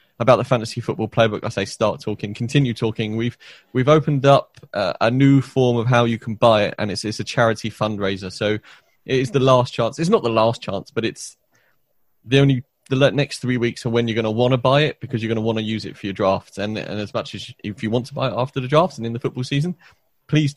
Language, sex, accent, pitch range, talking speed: English, male, British, 110-130 Hz, 265 wpm